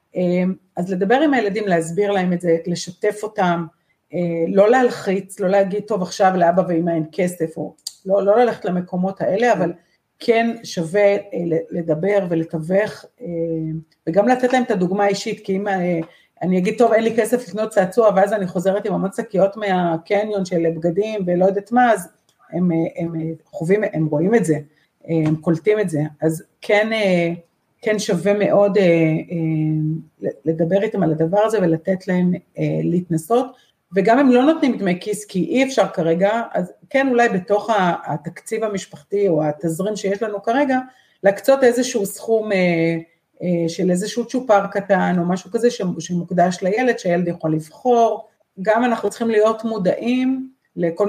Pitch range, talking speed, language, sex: 170-215 Hz, 155 wpm, Hebrew, female